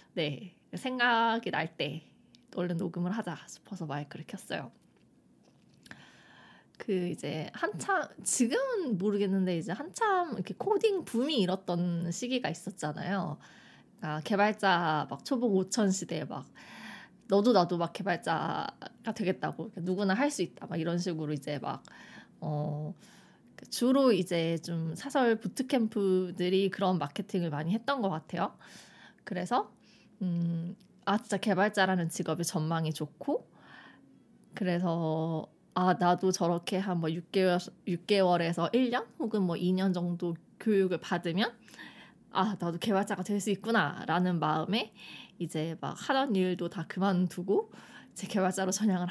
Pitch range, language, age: 170-210 Hz, Korean, 20-39